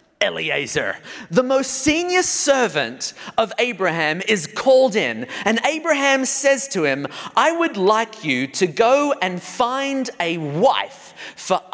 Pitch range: 175-275 Hz